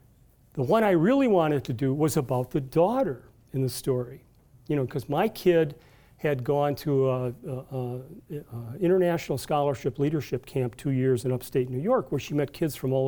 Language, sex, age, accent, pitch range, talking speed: English, male, 40-59, American, 125-155 Hz, 180 wpm